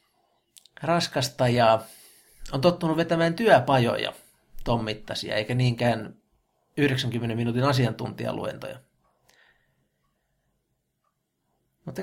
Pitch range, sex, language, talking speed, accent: 115-140 Hz, male, Finnish, 65 wpm, native